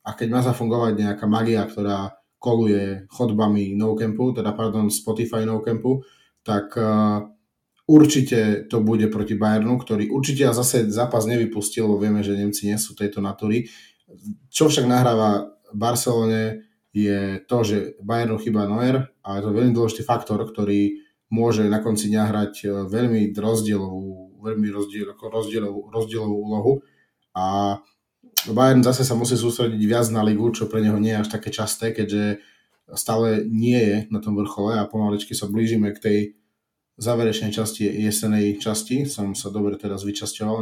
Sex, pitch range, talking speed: male, 105-115 Hz, 150 wpm